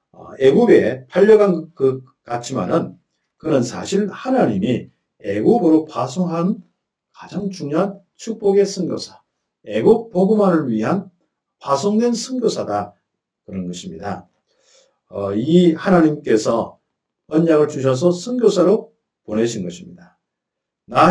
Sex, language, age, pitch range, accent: male, Korean, 50-69, 115-190 Hz, native